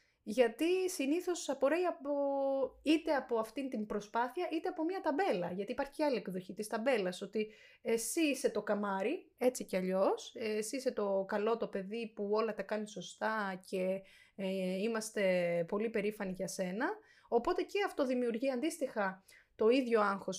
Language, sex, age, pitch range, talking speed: Greek, female, 20-39, 205-255 Hz, 155 wpm